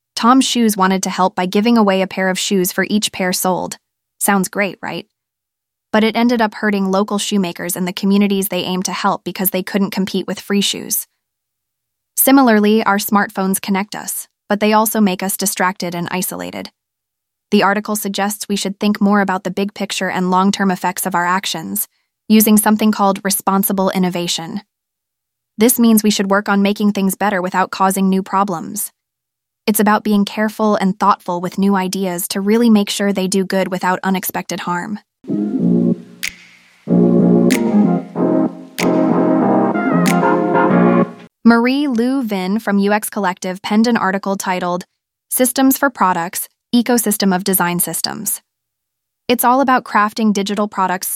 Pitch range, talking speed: 185-215 Hz, 150 wpm